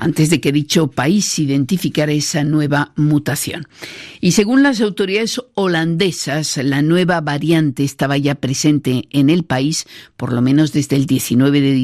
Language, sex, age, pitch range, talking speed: Spanish, female, 50-69, 130-160 Hz, 150 wpm